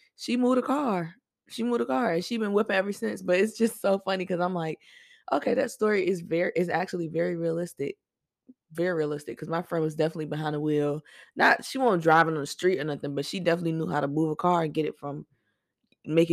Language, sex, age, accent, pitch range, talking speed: English, female, 20-39, American, 150-185 Hz, 235 wpm